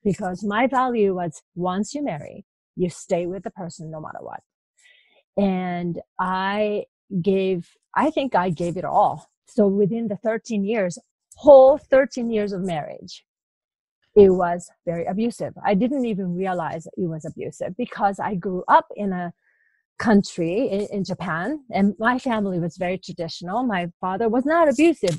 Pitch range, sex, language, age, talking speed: 180-230 Hz, female, English, 30-49, 155 wpm